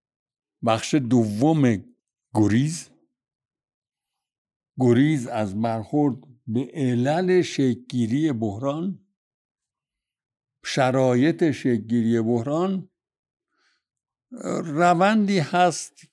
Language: Persian